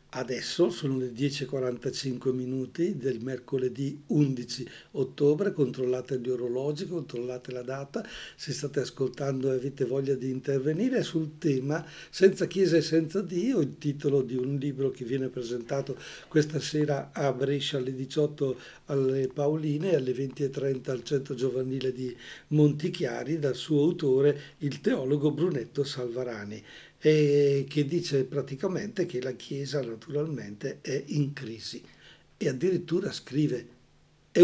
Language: Portuguese